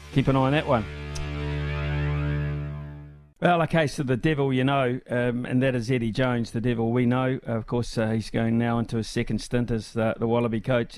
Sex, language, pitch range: male, English, 115-135 Hz